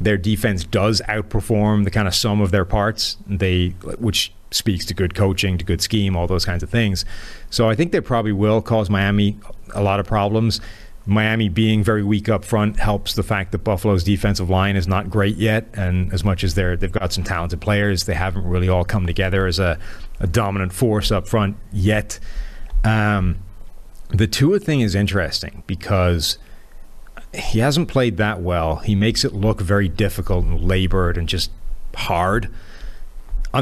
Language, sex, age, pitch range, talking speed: English, male, 30-49, 90-105 Hz, 185 wpm